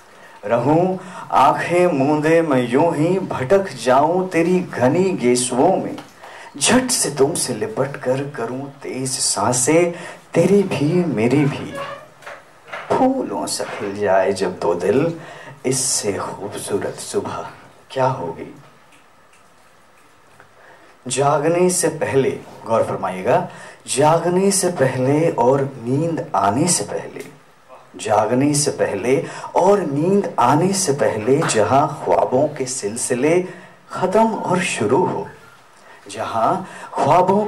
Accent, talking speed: native, 110 wpm